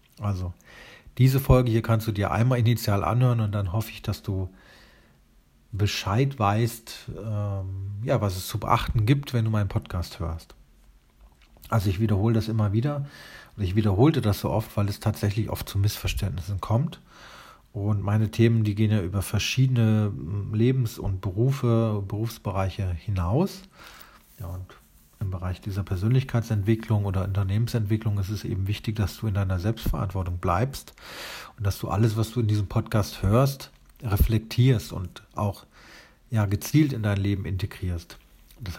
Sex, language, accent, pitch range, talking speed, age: male, German, German, 100-115 Hz, 155 wpm, 40-59